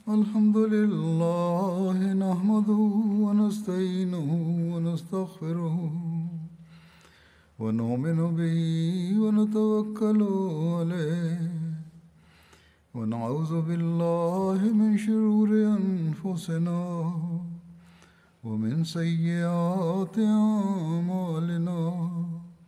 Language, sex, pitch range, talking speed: Bulgarian, male, 165-210 Hz, 35 wpm